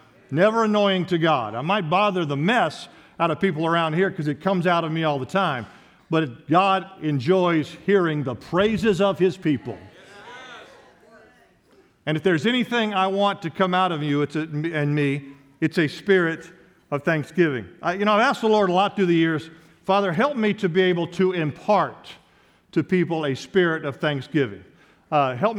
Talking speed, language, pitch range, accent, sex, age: 185 wpm, English, 155-195 Hz, American, male, 50-69